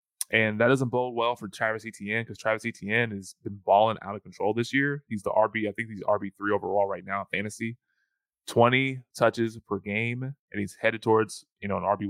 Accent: American